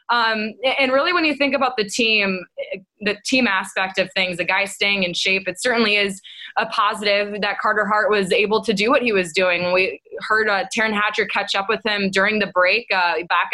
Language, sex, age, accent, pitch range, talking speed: English, female, 20-39, American, 200-245 Hz, 215 wpm